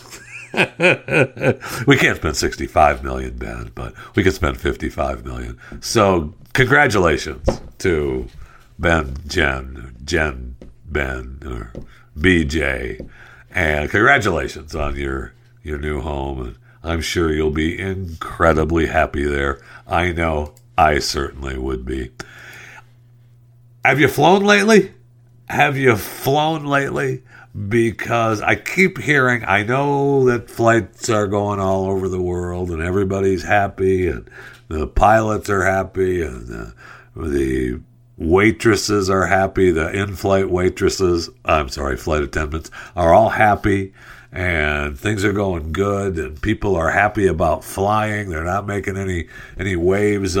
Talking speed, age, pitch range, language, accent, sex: 125 wpm, 60-79, 75-105 Hz, English, American, male